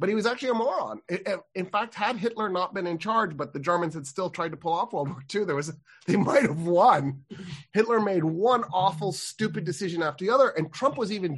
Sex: male